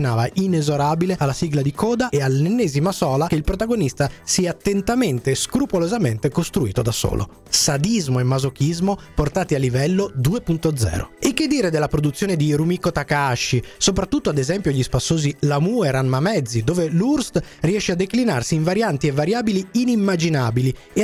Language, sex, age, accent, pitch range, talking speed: Italian, male, 30-49, native, 140-205 Hz, 155 wpm